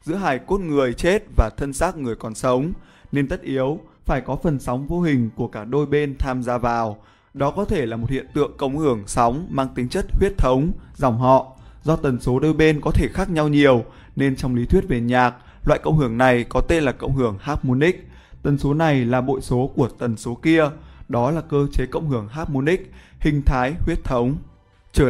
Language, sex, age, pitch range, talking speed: Vietnamese, male, 20-39, 125-155 Hz, 220 wpm